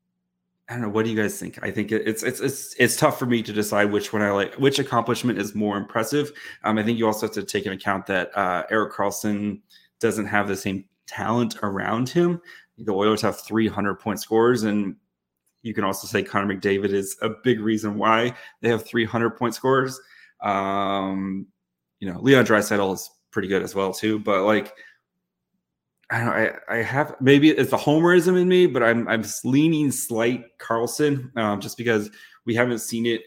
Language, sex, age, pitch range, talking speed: English, male, 20-39, 105-120 Hz, 200 wpm